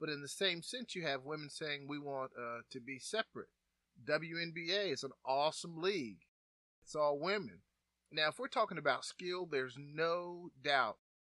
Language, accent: English, American